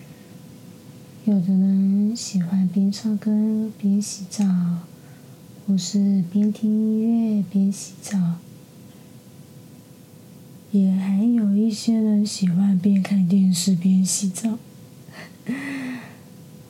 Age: 30-49